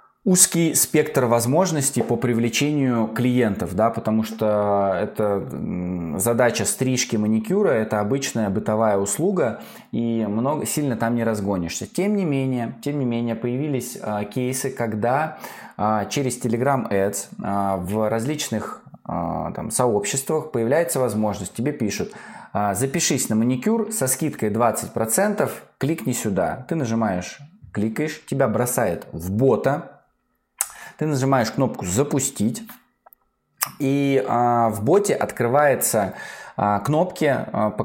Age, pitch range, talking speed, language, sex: 20-39, 110-135 Hz, 100 wpm, Russian, male